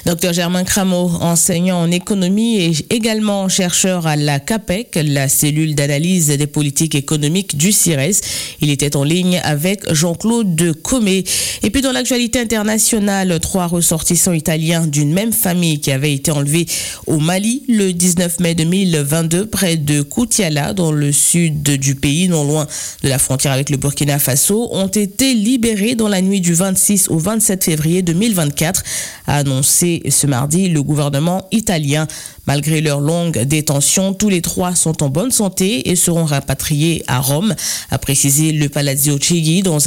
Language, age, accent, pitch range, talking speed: French, 50-69, French, 145-190 Hz, 160 wpm